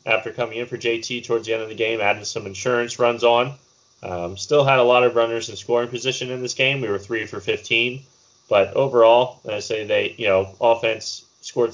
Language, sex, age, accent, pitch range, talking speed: English, male, 20-39, American, 100-125 Hz, 225 wpm